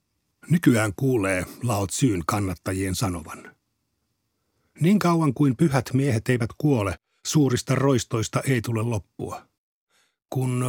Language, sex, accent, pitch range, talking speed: Finnish, male, native, 100-135 Hz, 105 wpm